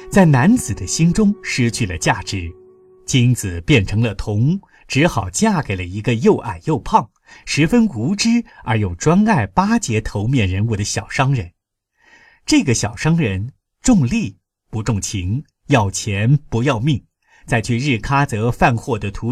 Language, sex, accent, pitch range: Chinese, male, native, 100-155 Hz